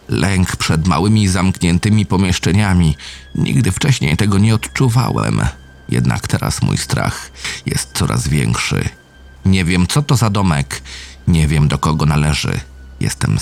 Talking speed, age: 130 wpm, 40-59